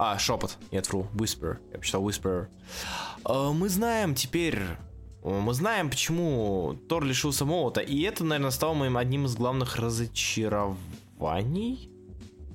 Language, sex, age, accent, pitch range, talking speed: Russian, male, 20-39, native, 105-155 Hz, 140 wpm